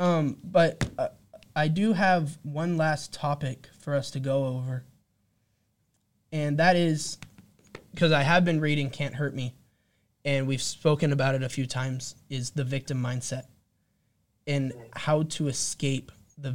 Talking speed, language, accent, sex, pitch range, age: 150 wpm, English, American, male, 130-160 Hz, 10-29